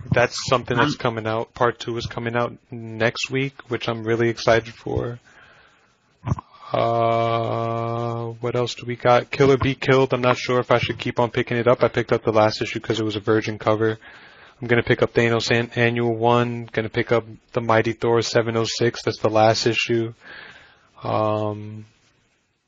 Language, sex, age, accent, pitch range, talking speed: English, male, 20-39, American, 115-125 Hz, 190 wpm